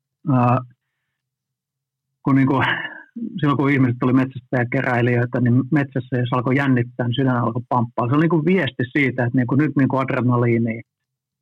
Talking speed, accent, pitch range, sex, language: 140 wpm, native, 125-140 Hz, male, Finnish